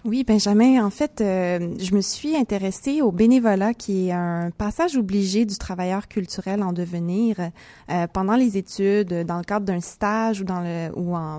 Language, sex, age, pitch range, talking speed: French, female, 20-39, 180-220 Hz, 185 wpm